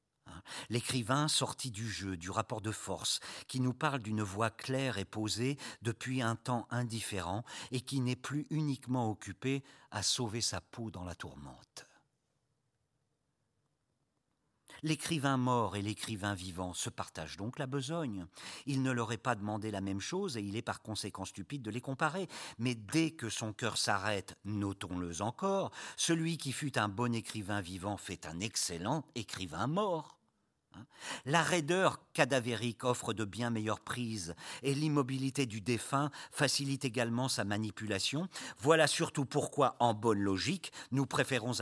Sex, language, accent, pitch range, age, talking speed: male, French, French, 105-140 Hz, 50-69, 150 wpm